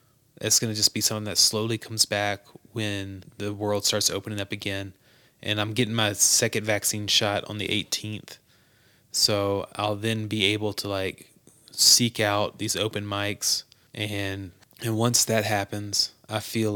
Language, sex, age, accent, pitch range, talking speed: English, male, 20-39, American, 100-115 Hz, 165 wpm